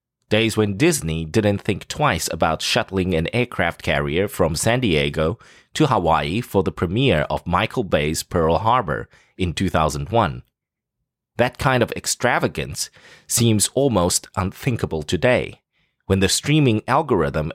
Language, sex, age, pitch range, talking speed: English, male, 30-49, 90-125 Hz, 130 wpm